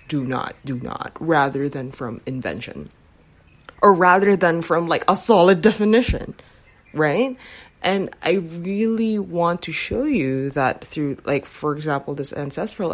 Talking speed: 145 wpm